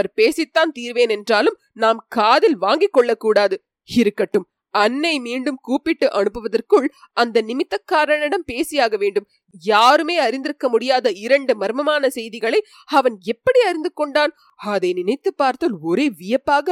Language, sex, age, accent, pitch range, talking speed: Tamil, female, 30-49, native, 225-360 Hz, 115 wpm